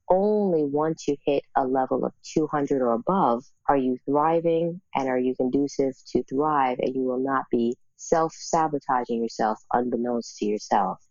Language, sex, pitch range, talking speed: English, female, 125-165 Hz, 155 wpm